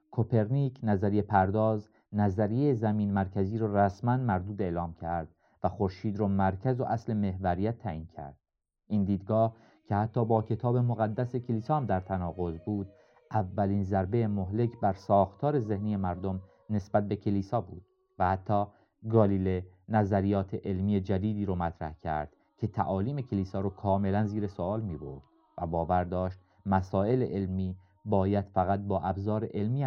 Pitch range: 95-115 Hz